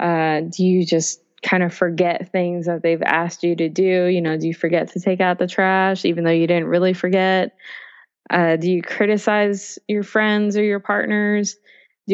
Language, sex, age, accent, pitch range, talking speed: English, female, 20-39, American, 165-190 Hz, 200 wpm